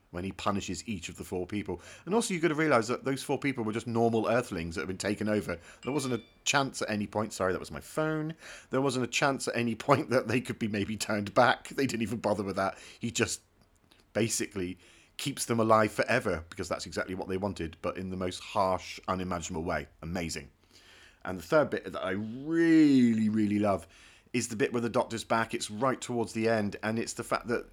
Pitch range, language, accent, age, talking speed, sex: 95-115 Hz, English, British, 30-49, 230 wpm, male